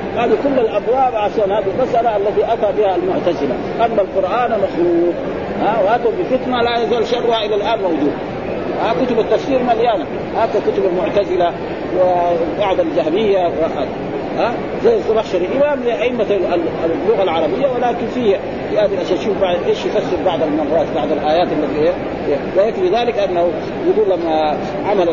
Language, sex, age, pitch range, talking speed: Arabic, male, 40-59, 185-245 Hz, 155 wpm